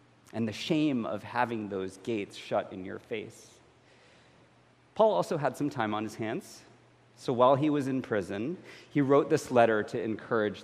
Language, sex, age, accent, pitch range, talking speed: English, male, 40-59, American, 115-150 Hz, 175 wpm